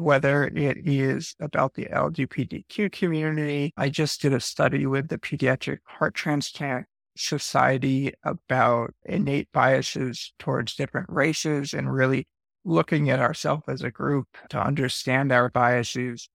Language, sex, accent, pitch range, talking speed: English, male, American, 130-145 Hz, 130 wpm